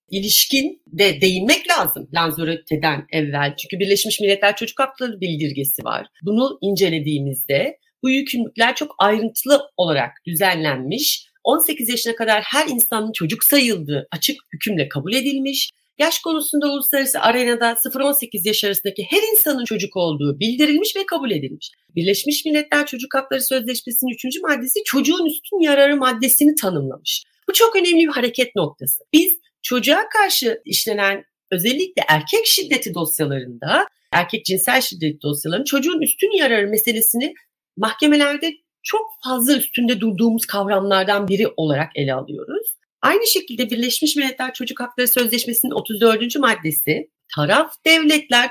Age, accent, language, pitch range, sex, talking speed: 40-59, native, Turkish, 200-295 Hz, female, 125 wpm